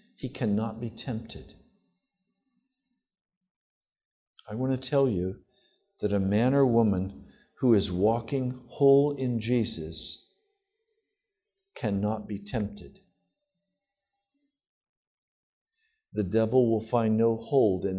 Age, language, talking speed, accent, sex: 60-79, English, 100 wpm, American, male